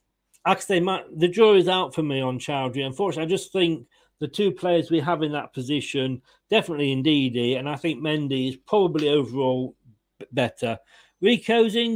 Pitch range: 135-175 Hz